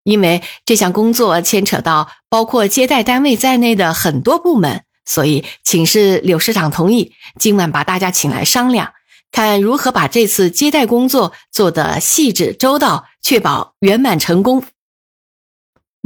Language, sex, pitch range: Chinese, female, 180-275 Hz